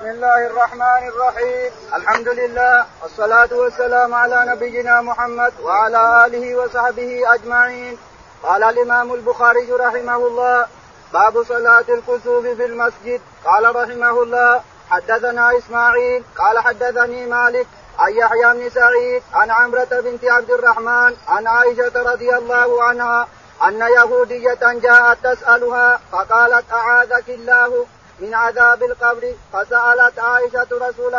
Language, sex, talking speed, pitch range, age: Arabic, male, 115 wpm, 240-250 Hz, 40-59